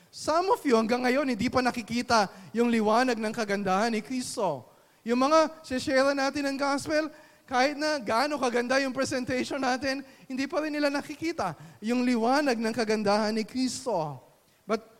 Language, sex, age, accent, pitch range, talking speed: Filipino, male, 20-39, native, 225-280 Hz, 155 wpm